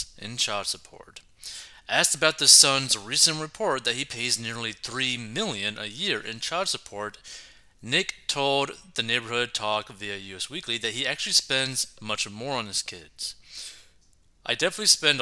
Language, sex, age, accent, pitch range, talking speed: English, male, 30-49, American, 100-135 Hz, 160 wpm